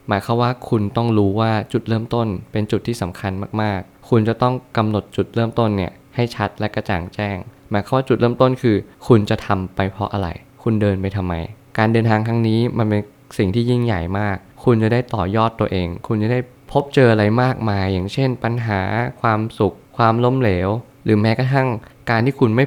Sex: male